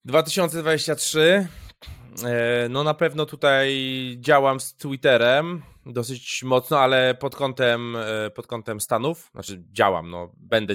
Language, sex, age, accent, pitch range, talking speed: Polish, male, 20-39, native, 120-150 Hz, 110 wpm